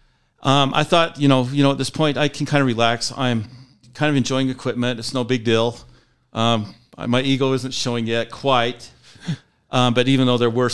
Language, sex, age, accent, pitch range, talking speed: English, male, 50-69, American, 120-140 Hz, 205 wpm